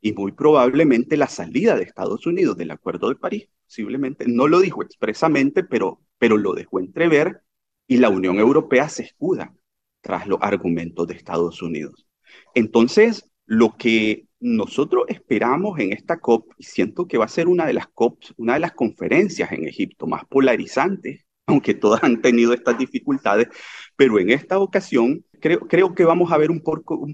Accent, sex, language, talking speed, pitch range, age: Venezuelan, male, Spanish, 175 wpm, 105-160 Hz, 40-59